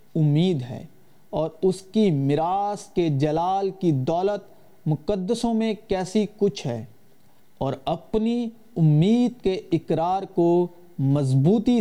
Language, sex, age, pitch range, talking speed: Urdu, male, 40-59, 145-210 Hz, 110 wpm